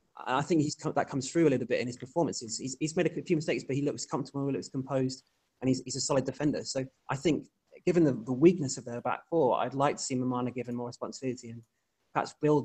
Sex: male